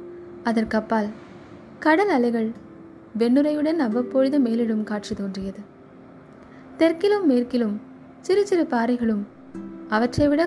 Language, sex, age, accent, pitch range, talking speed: Tamil, female, 20-39, native, 220-285 Hz, 85 wpm